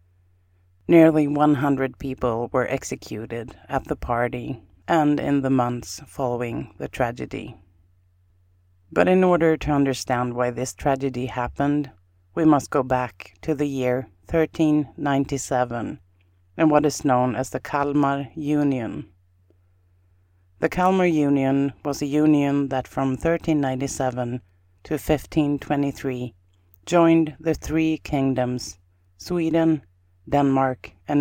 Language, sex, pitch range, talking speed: English, female, 90-145 Hz, 110 wpm